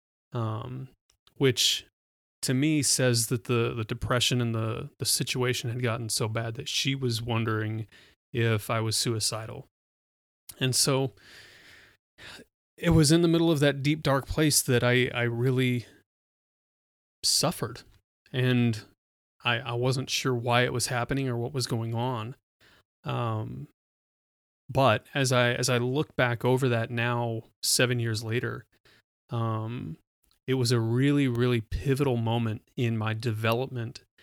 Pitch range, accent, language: 115-130 Hz, American, English